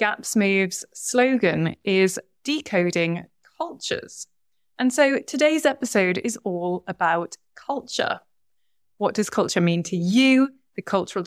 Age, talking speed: 20-39, 115 wpm